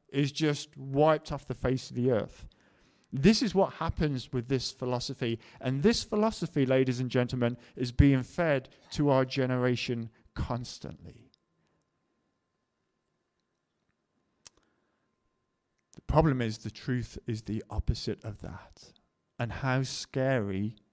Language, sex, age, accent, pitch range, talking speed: English, male, 50-69, British, 115-140 Hz, 120 wpm